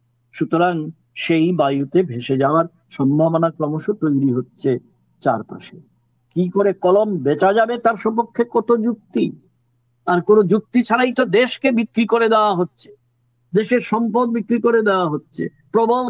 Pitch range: 140-215 Hz